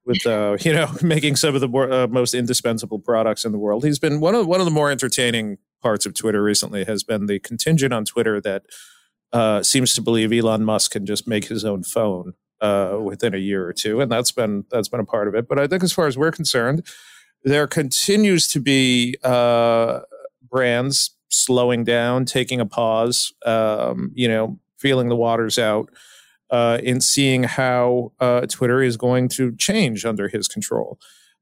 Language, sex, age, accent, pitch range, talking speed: English, male, 40-59, American, 110-135 Hz, 195 wpm